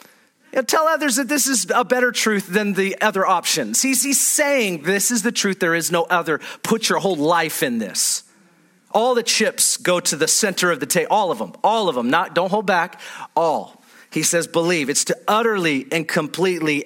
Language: English